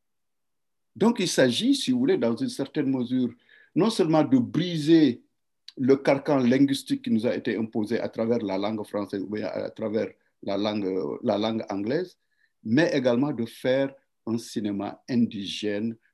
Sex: male